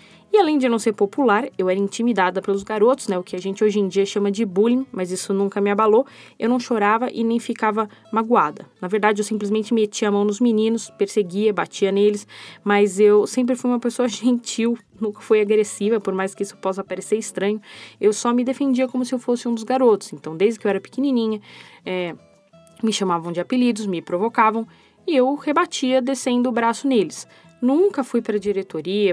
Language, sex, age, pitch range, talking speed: Portuguese, female, 10-29, 200-240 Hz, 200 wpm